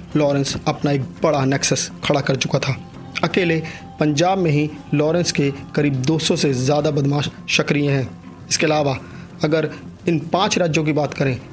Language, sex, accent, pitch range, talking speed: Hindi, male, native, 145-170 Hz, 160 wpm